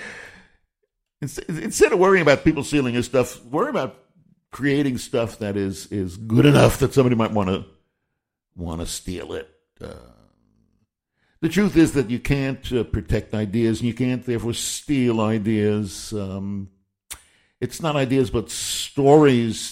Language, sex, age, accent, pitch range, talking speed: English, male, 60-79, American, 105-130 Hz, 140 wpm